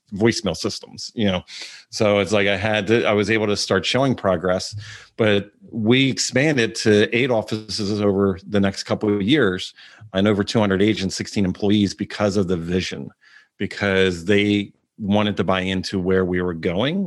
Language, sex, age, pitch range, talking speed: English, male, 40-59, 100-120 Hz, 170 wpm